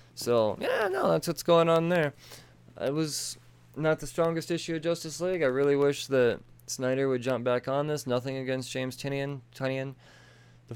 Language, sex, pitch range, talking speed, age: English, male, 100-135 Hz, 185 wpm, 20-39